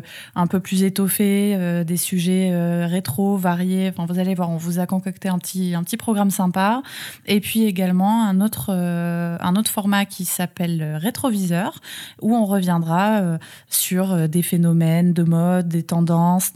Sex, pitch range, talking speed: female, 175-205 Hz, 170 wpm